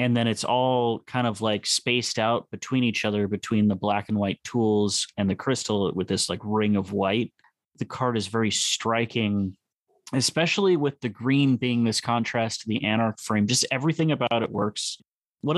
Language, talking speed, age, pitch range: English, 190 wpm, 30-49, 105-125 Hz